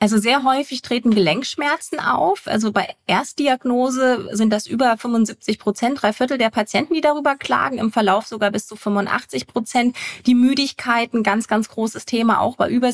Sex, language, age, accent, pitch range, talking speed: female, German, 20-39, German, 210-255 Hz, 170 wpm